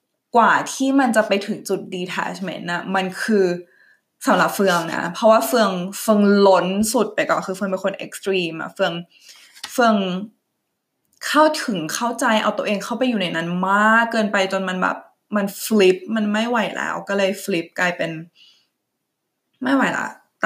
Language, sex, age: Thai, female, 20-39